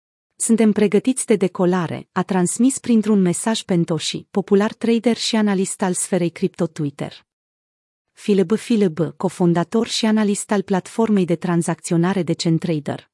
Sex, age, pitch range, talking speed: female, 30-49, 175-220 Hz, 125 wpm